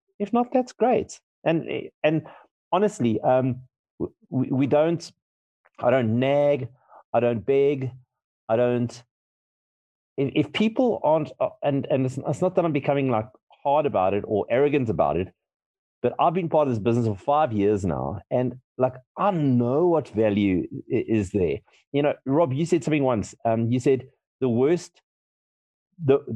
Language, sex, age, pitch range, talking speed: English, male, 30-49, 115-145 Hz, 155 wpm